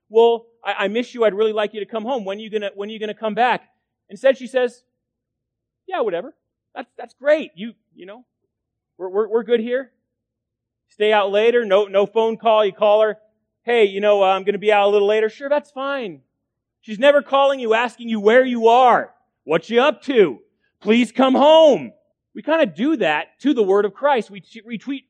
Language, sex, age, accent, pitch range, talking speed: English, male, 30-49, American, 150-230 Hz, 220 wpm